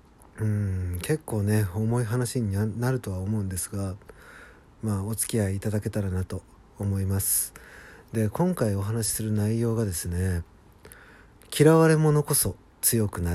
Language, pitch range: Japanese, 95-125 Hz